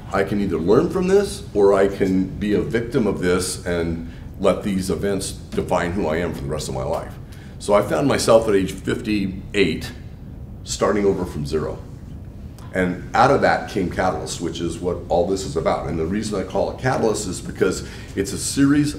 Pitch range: 95-125 Hz